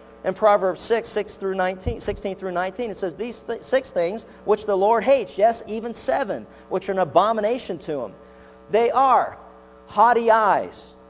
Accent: American